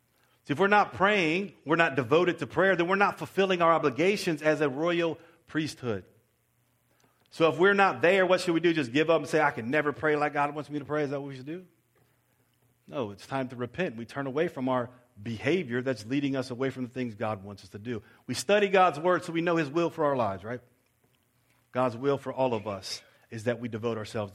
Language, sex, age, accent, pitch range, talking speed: English, male, 40-59, American, 120-160 Hz, 235 wpm